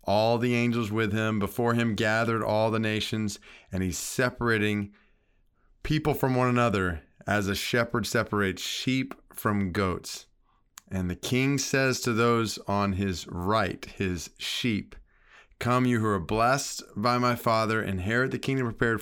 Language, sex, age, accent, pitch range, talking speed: English, male, 30-49, American, 100-135 Hz, 150 wpm